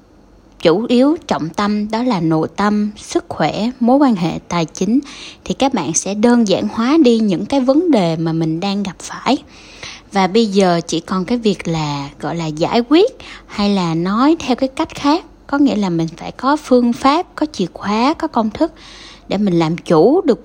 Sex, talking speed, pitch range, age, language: female, 205 wpm, 170-250 Hz, 10-29, Vietnamese